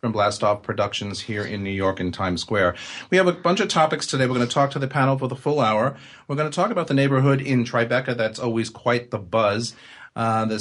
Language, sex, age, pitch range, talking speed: English, male, 40-59, 105-135 Hz, 250 wpm